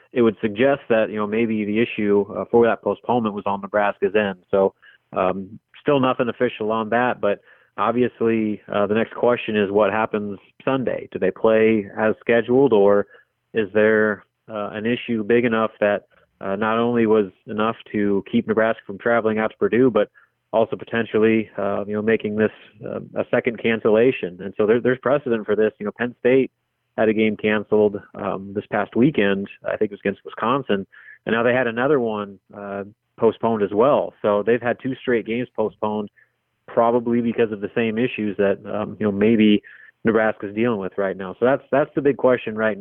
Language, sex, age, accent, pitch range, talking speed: English, male, 30-49, American, 105-115 Hz, 190 wpm